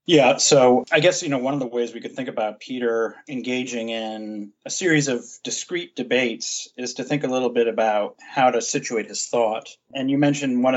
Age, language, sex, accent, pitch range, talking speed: 30-49, English, male, American, 115-145 Hz, 210 wpm